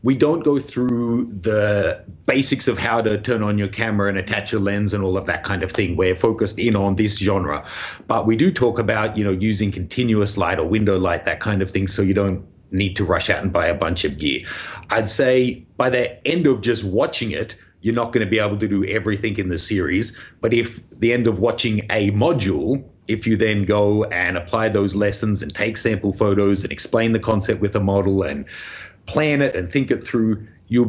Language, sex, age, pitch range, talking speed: English, male, 30-49, 100-115 Hz, 225 wpm